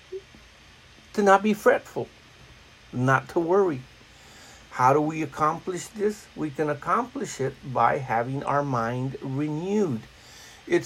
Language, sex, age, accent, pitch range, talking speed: English, male, 60-79, American, 135-180 Hz, 120 wpm